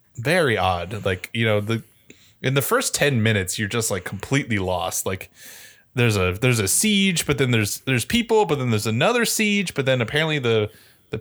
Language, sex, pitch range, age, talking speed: English, male, 105-170 Hz, 20-39, 200 wpm